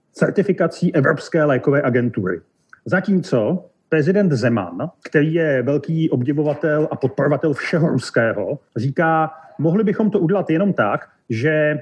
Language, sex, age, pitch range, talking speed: Slovak, male, 40-59, 150-185 Hz, 115 wpm